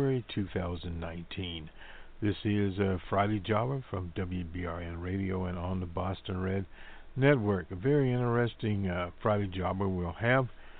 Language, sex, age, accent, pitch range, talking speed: English, male, 60-79, American, 95-115 Hz, 130 wpm